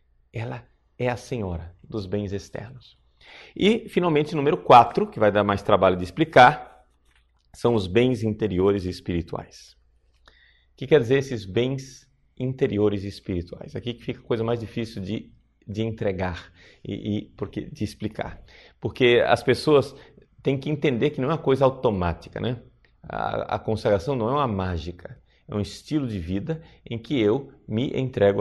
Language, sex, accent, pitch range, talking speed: Portuguese, male, Brazilian, 95-130 Hz, 165 wpm